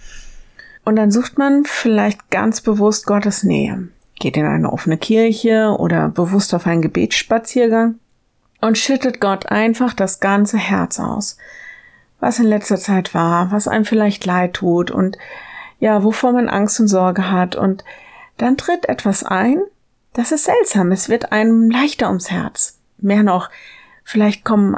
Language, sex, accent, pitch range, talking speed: German, female, German, 195-245 Hz, 155 wpm